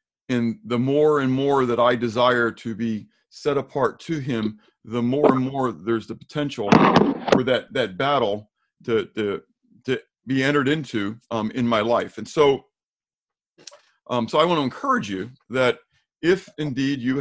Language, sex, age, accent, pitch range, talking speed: English, male, 50-69, American, 115-150 Hz, 165 wpm